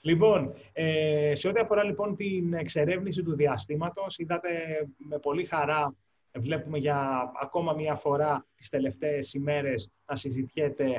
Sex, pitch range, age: male, 135-170 Hz, 20-39